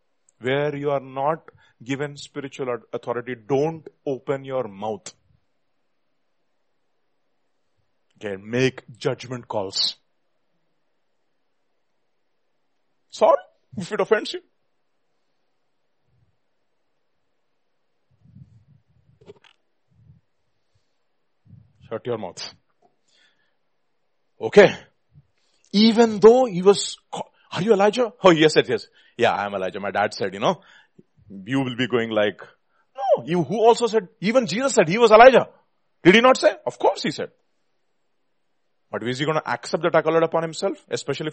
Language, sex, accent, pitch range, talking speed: English, male, Indian, 135-205 Hz, 115 wpm